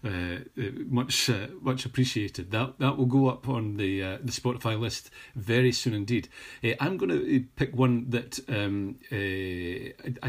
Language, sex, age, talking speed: English, male, 40-59, 155 wpm